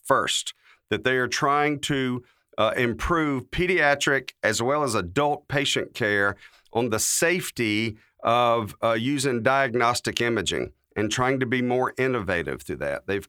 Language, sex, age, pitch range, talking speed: English, male, 50-69, 110-135 Hz, 145 wpm